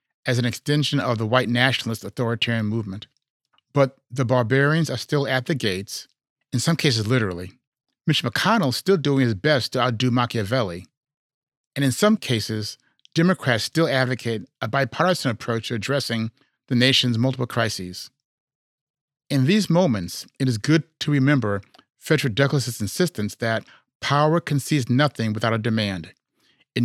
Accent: American